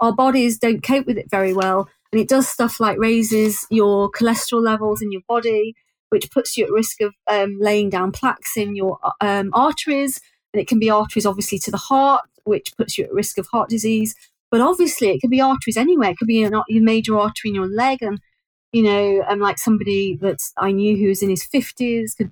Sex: female